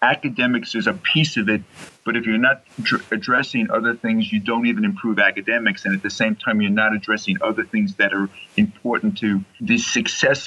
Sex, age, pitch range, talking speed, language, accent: male, 50-69, 115-165 Hz, 200 wpm, English, American